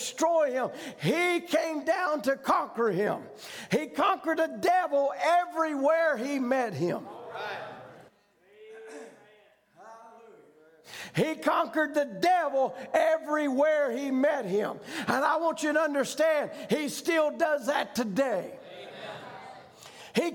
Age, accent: 50-69, American